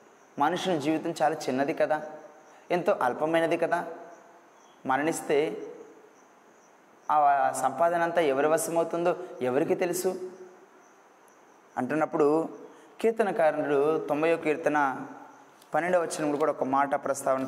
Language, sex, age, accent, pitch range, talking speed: Telugu, male, 20-39, native, 135-175 Hz, 95 wpm